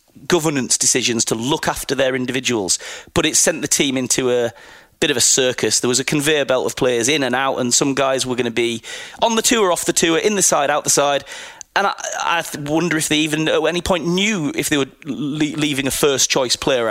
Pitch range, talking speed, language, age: 150-195 Hz, 235 wpm, English, 30-49